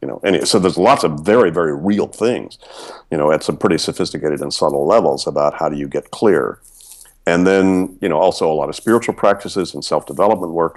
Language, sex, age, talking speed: English, male, 50-69, 225 wpm